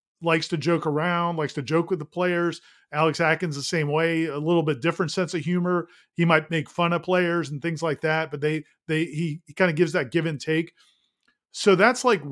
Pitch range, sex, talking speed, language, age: 155-190 Hz, male, 230 wpm, English, 40-59